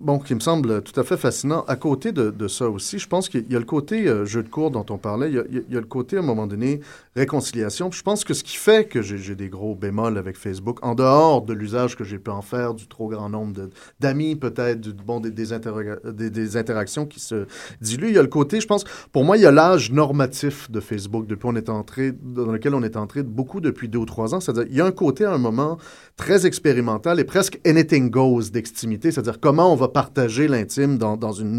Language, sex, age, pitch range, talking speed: French, male, 30-49, 115-150 Hz, 265 wpm